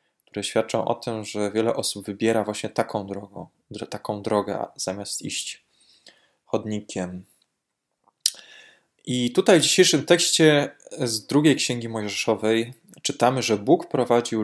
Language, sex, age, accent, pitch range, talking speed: Polish, male, 20-39, native, 105-125 Hz, 120 wpm